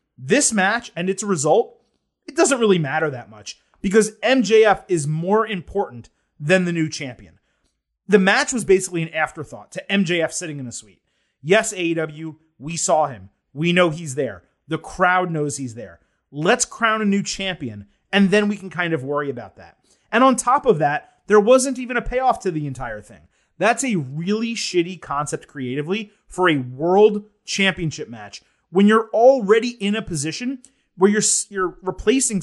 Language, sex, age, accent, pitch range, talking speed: English, male, 30-49, American, 150-200 Hz, 175 wpm